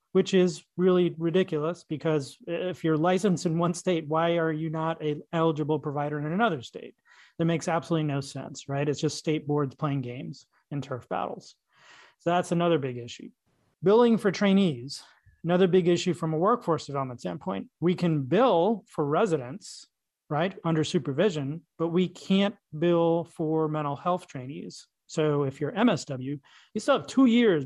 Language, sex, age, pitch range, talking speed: English, male, 30-49, 150-180 Hz, 165 wpm